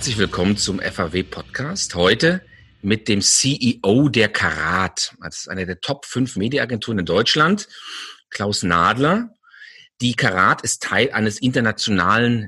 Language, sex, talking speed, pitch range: German, male, 125 wpm, 105-140 Hz